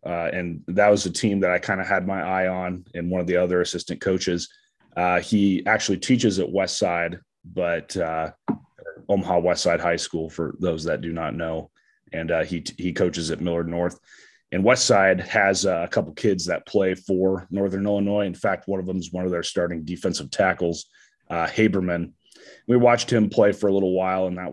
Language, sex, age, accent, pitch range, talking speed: English, male, 30-49, American, 90-105 Hz, 205 wpm